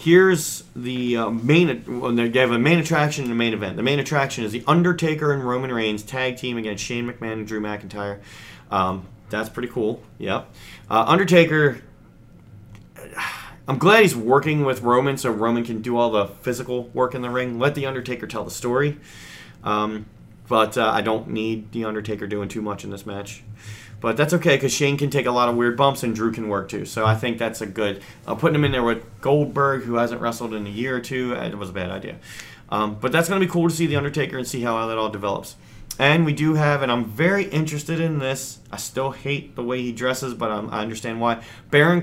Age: 30-49